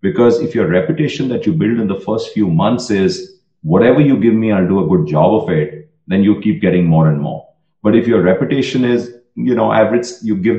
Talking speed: 230 wpm